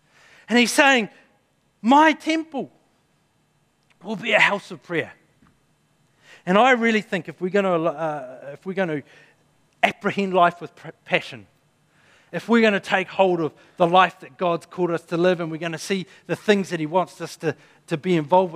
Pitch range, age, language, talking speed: 150-190 Hz, 40-59, English, 190 wpm